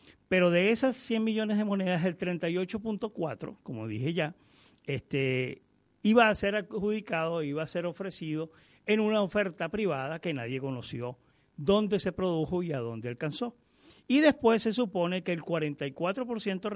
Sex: male